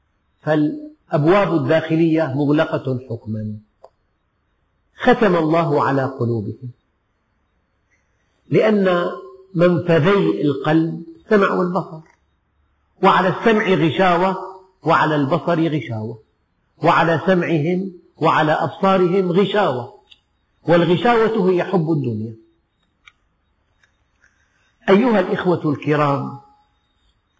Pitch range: 110-180 Hz